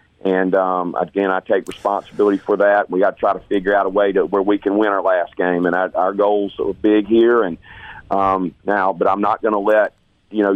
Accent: American